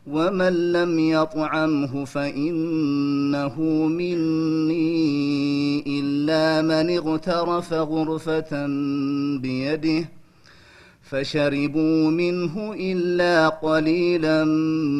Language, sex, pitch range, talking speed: Amharic, male, 140-160 Hz, 55 wpm